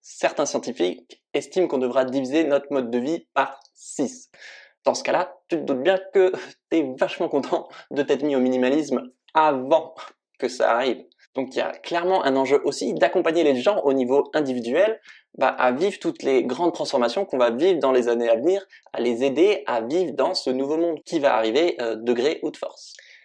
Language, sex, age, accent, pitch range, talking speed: French, male, 20-39, French, 125-170 Hz, 205 wpm